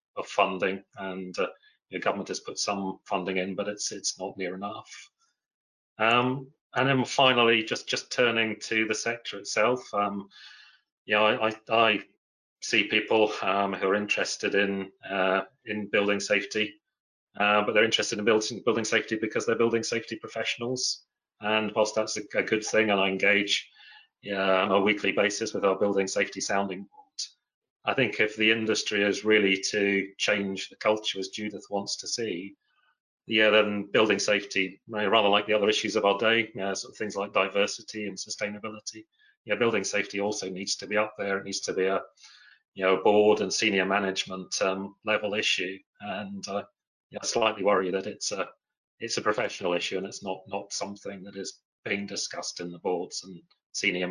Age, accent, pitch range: 30-49, British, 95-110 Hz